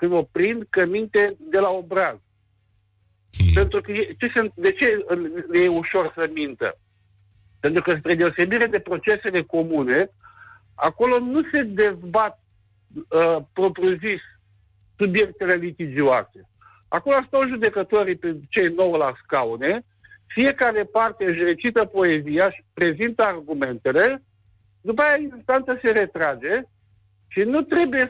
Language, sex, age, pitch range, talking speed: Romanian, male, 60-79, 160-225 Hz, 115 wpm